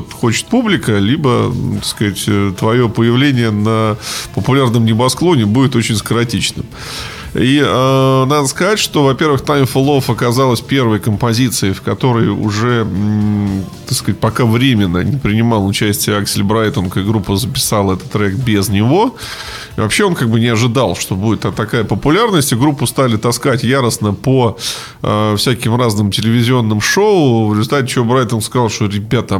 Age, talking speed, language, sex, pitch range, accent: 20-39, 150 wpm, Russian, male, 105-130 Hz, native